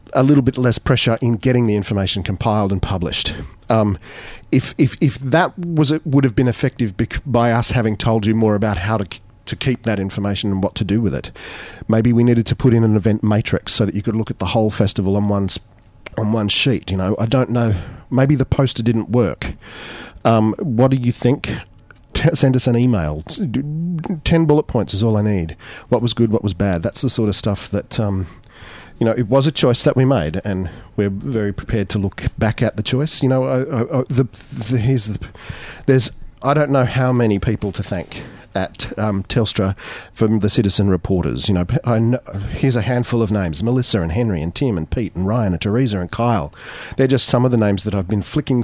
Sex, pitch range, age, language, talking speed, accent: male, 100-125 Hz, 40-59, English, 225 wpm, Australian